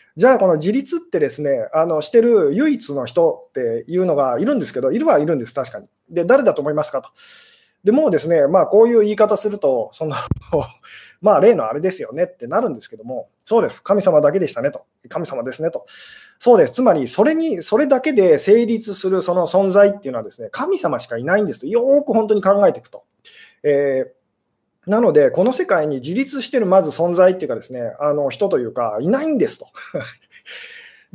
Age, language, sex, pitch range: 20-39, Japanese, male, 170-275 Hz